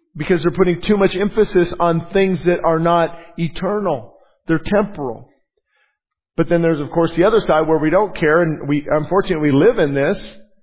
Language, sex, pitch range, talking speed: English, male, 150-185 Hz, 185 wpm